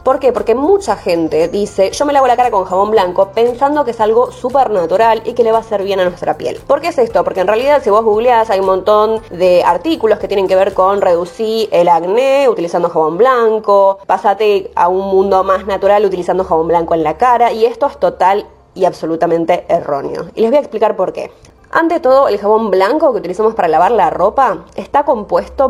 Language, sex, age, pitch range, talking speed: Spanish, female, 20-39, 185-245 Hz, 220 wpm